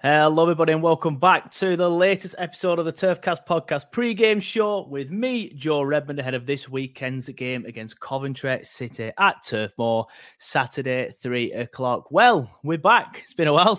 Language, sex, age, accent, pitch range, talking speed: English, male, 20-39, British, 125-175 Hz, 175 wpm